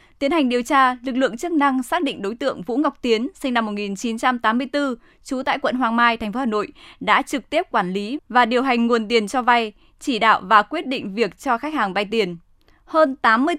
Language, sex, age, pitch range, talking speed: Vietnamese, female, 10-29, 215-270 Hz, 230 wpm